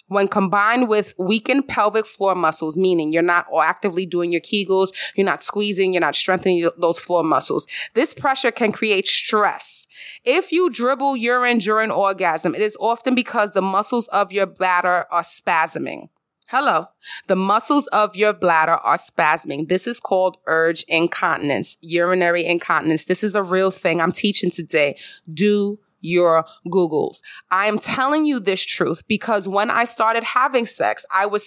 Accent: American